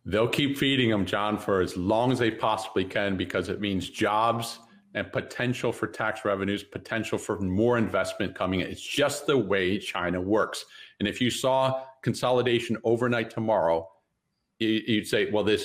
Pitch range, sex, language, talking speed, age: 100-125 Hz, male, English, 165 wpm, 50-69